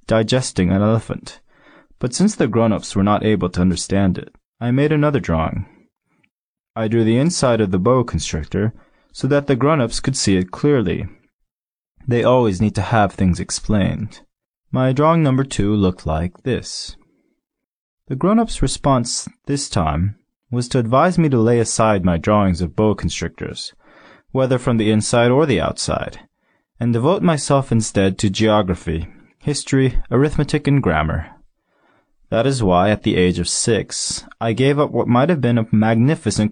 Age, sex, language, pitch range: 20-39, male, Chinese, 95-130 Hz